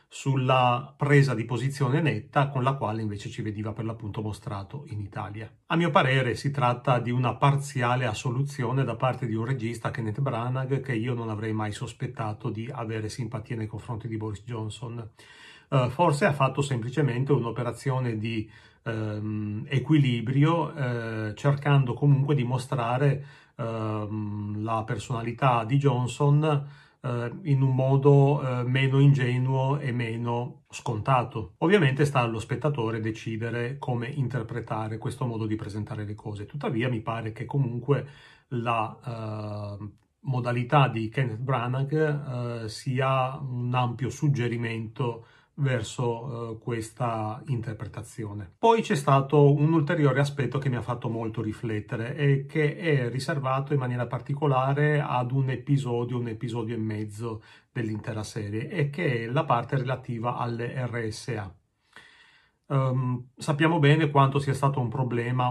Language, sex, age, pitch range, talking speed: Italian, male, 40-59, 115-140 Hz, 135 wpm